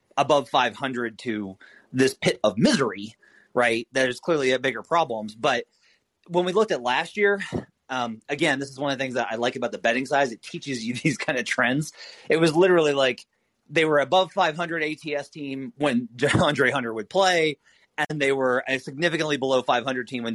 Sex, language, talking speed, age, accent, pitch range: male, English, 195 wpm, 30-49, American, 120-155 Hz